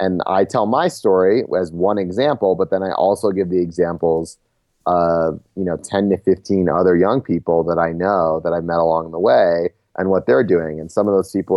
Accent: American